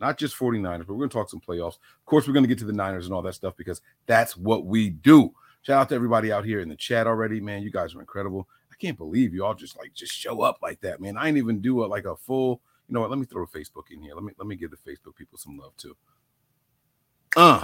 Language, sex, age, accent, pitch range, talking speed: English, male, 30-49, American, 100-130 Hz, 285 wpm